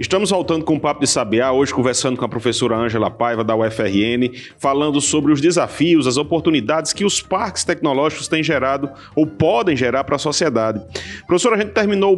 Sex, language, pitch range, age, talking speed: male, Portuguese, 140-190 Hz, 40-59, 190 wpm